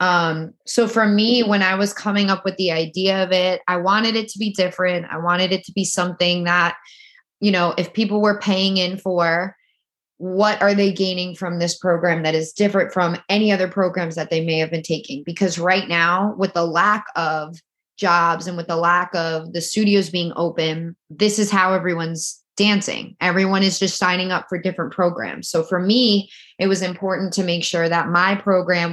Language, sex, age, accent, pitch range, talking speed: English, female, 20-39, American, 170-200 Hz, 200 wpm